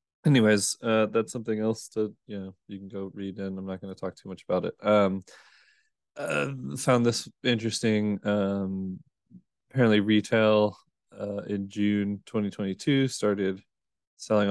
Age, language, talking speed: 20-39, English, 150 wpm